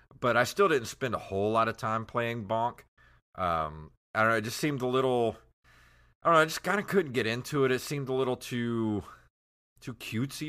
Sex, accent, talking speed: male, American, 215 wpm